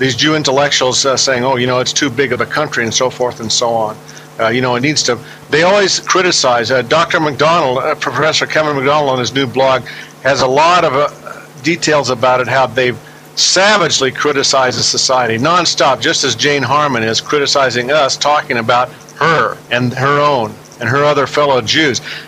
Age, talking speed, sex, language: 50-69, 195 wpm, male, English